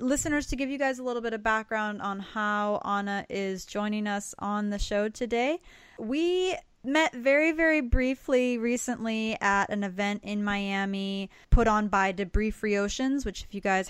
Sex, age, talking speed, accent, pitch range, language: female, 10-29, 175 wpm, American, 195-240 Hz, English